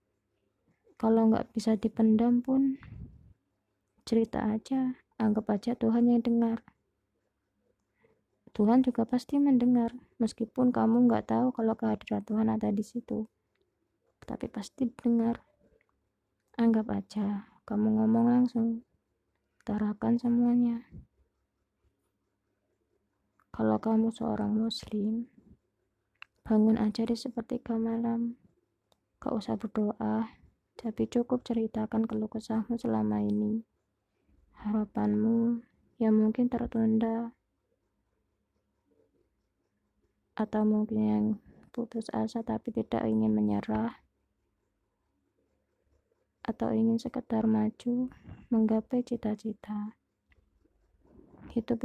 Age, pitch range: 20-39, 215-235 Hz